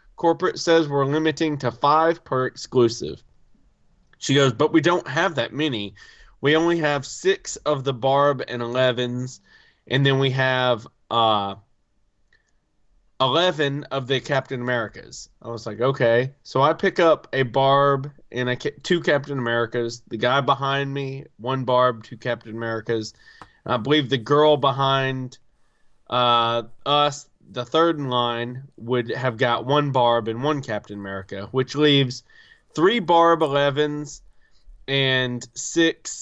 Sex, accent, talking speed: male, American, 140 wpm